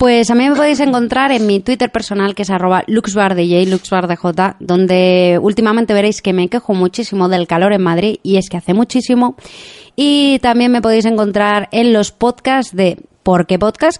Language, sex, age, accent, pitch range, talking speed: Spanish, female, 20-39, Spanish, 190-230 Hz, 175 wpm